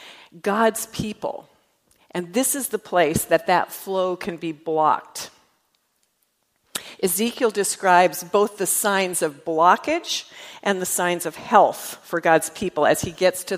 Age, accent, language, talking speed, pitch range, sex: 50-69, American, English, 140 wpm, 160-215 Hz, female